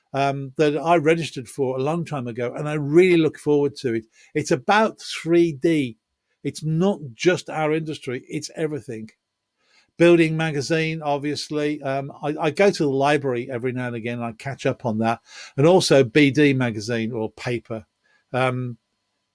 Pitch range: 135-165 Hz